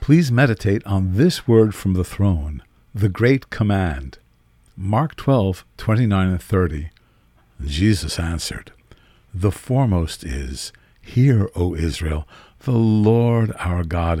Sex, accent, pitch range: male, American, 85-115 Hz